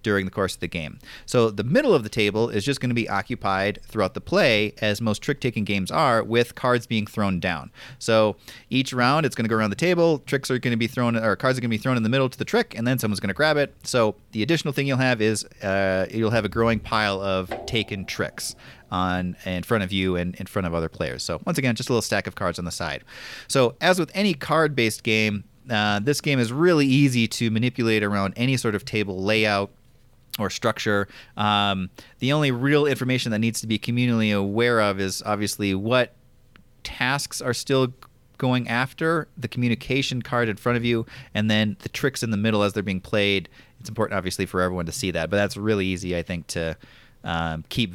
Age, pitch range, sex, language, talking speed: 30-49, 100-125 Hz, male, English, 230 wpm